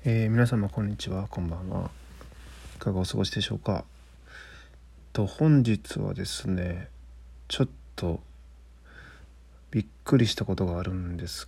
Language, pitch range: Japanese, 65-100 Hz